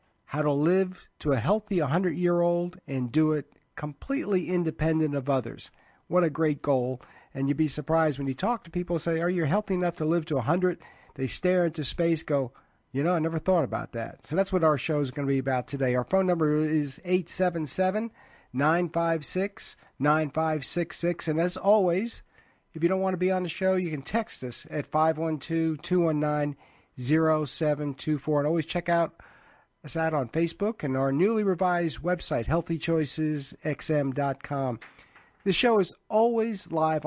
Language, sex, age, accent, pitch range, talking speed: English, male, 40-59, American, 140-175 Hz, 165 wpm